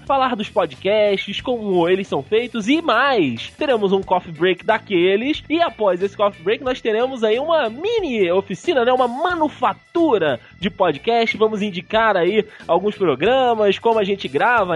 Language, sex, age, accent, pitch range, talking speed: Portuguese, male, 20-39, Brazilian, 195-250 Hz, 160 wpm